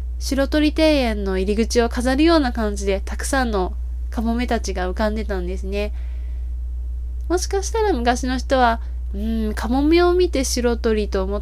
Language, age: Japanese, 20-39